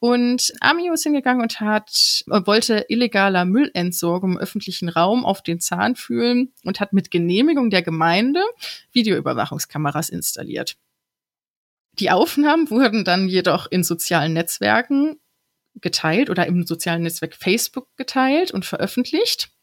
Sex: female